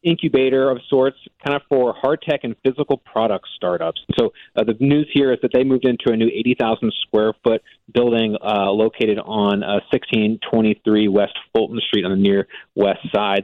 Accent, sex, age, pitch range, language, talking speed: American, male, 30-49, 110-140 Hz, English, 185 wpm